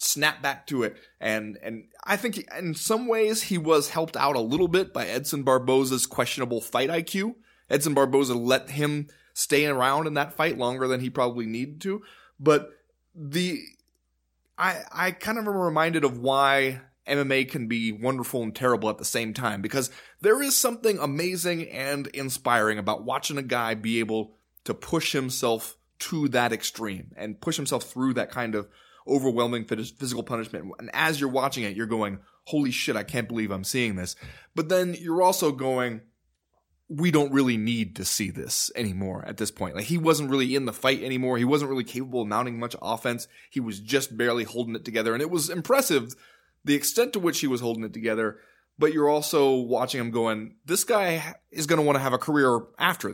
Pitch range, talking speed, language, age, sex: 115-150 Hz, 195 wpm, English, 20-39, male